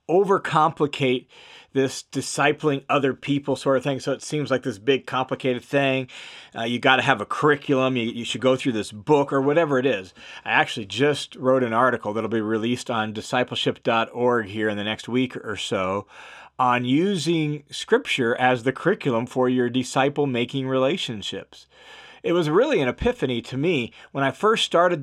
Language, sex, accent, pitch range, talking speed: English, male, American, 130-160 Hz, 175 wpm